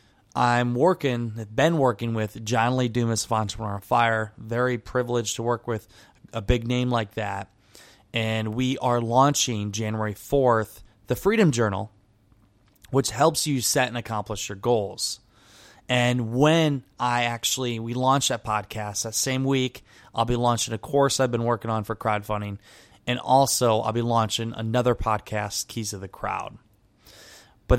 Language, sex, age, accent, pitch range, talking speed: English, male, 20-39, American, 105-125 Hz, 160 wpm